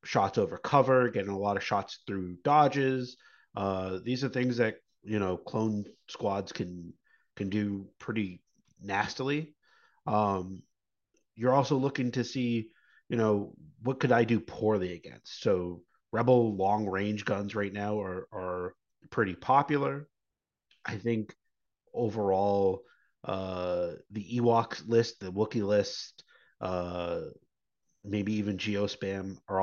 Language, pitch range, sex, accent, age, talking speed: English, 100-120 Hz, male, American, 30-49, 130 wpm